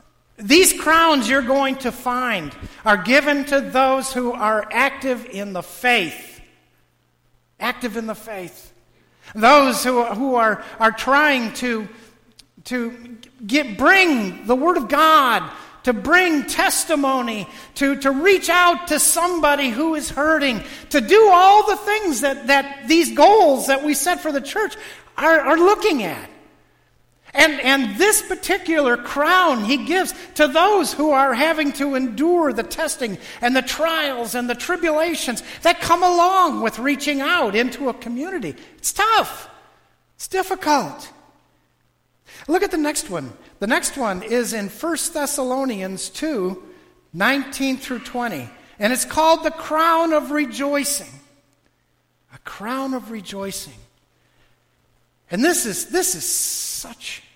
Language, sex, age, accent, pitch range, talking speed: English, male, 50-69, American, 235-320 Hz, 135 wpm